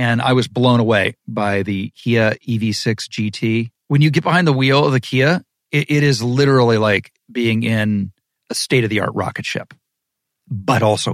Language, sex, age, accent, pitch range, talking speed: English, male, 40-59, American, 115-145 Hz, 170 wpm